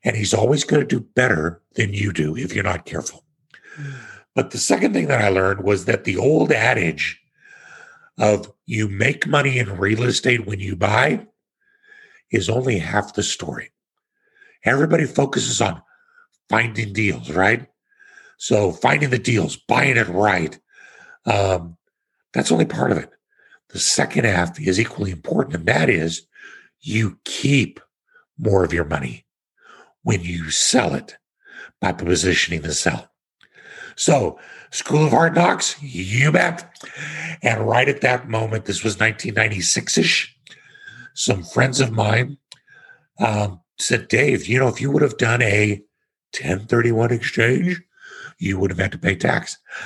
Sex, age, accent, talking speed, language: male, 50-69, American, 145 wpm, English